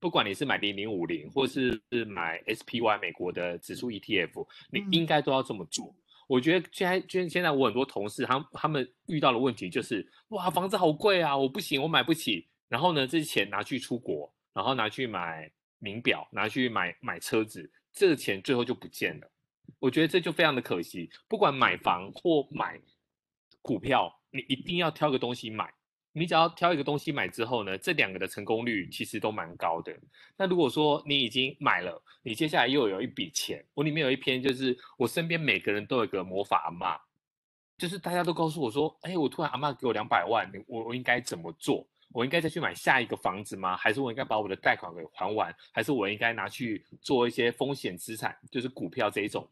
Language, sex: Chinese, male